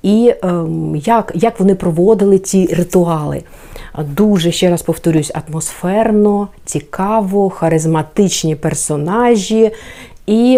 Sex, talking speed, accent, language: female, 90 wpm, native, Ukrainian